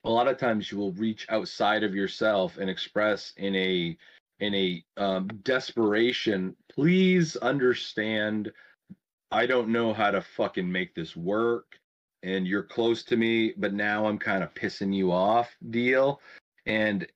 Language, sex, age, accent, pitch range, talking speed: English, male, 30-49, American, 100-125 Hz, 155 wpm